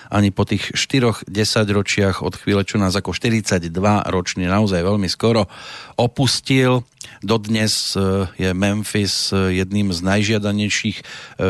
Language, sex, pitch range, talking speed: Slovak, male, 95-115 Hz, 115 wpm